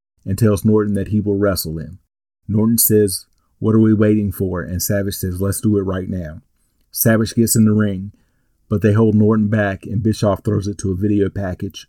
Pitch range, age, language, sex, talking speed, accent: 95-110 Hz, 40-59, English, male, 205 wpm, American